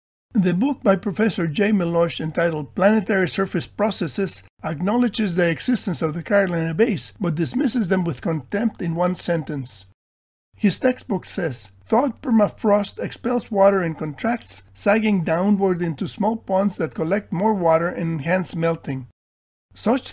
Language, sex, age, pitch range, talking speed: English, male, 50-69, 165-210 Hz, 140 wpm